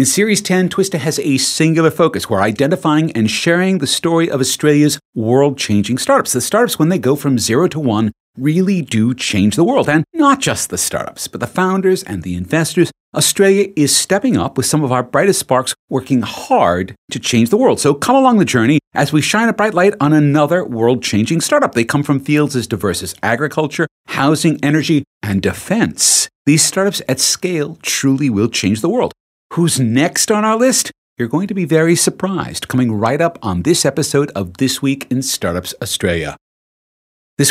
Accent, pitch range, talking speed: American, 125-175 Hz, 190 wpm